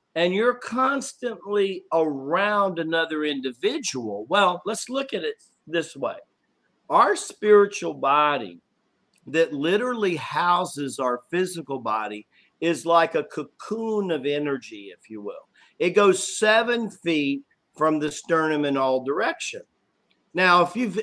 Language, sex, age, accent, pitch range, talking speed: English, male, 50-69, American, 145-210 Hz, 125 wpm